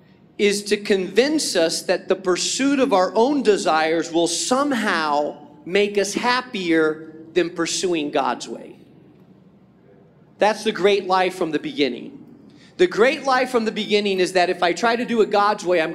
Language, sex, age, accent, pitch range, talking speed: English, male, 40-59, American, 185-245 Hz, 165 wpm